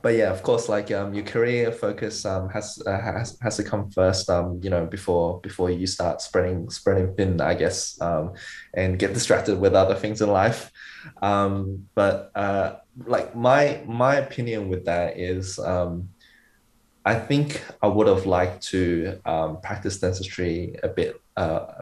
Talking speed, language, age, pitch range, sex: 170 wpm, English, 20-39, 90-110 Hz, male